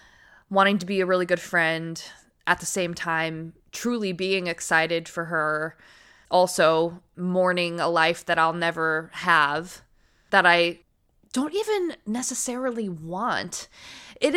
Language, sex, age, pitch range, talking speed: English, female, 20-39, 165-200 Hz, 130 wpm